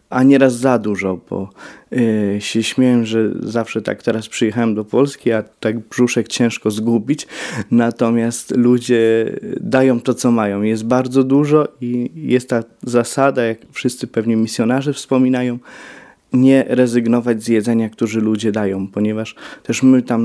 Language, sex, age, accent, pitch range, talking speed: Polish, male, 20-39, native, 110-125 Hz, 145 wpm